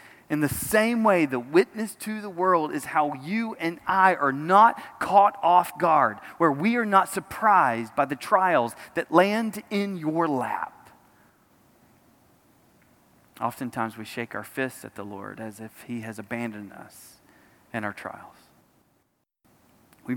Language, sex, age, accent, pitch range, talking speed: English, male, 30-49, American, 120-175 Hz, 150 wpm